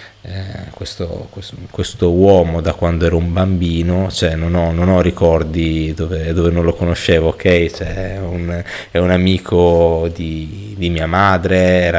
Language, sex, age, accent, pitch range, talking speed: Italian, male, 20-39, native, 85-110 Hz, 130 wpm